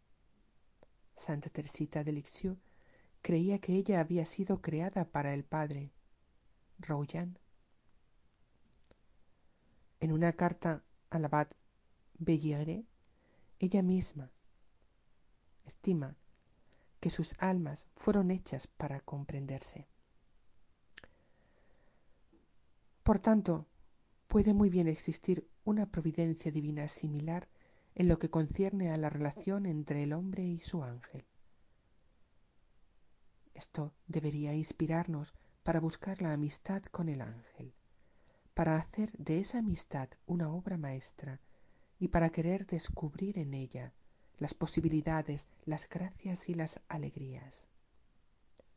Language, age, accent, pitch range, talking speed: Spanish, 50-69, Spanish, 145-180 Hz, 105 wpm